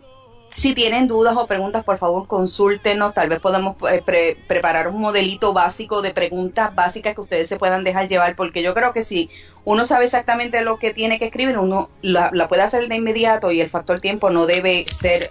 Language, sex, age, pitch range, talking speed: English, female, 30-49, 175-225 Hz, 205 wpm